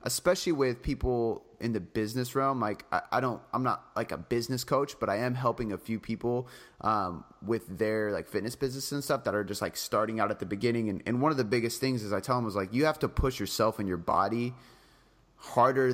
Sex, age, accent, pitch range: male, 30-49, American, 110-125 Hz